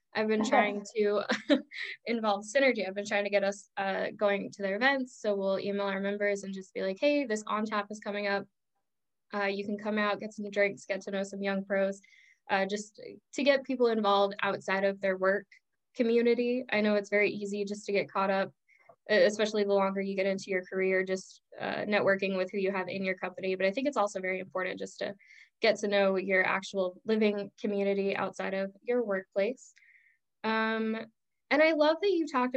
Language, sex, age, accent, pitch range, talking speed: English, female, 10-29, American, 195-220 Hz, 210 wpm